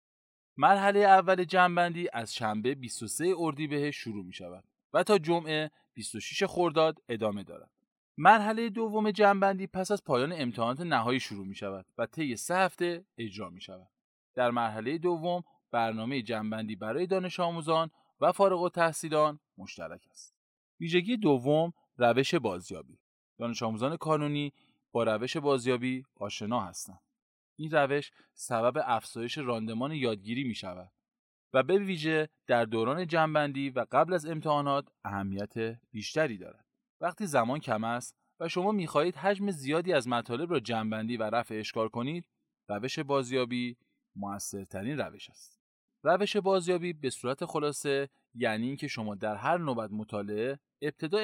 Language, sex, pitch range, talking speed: Persian, male, 115-170 Hz, 140 wpm